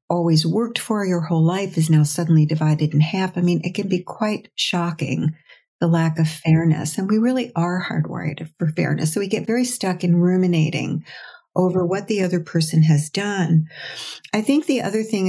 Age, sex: 50-69, female